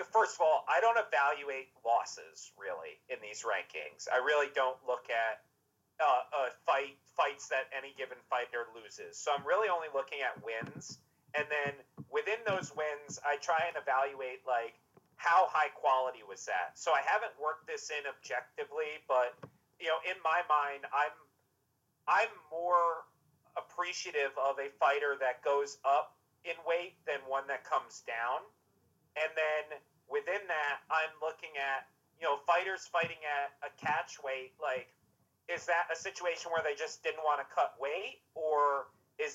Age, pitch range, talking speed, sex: 40-59, 135-170 Hz, 165 wpm, male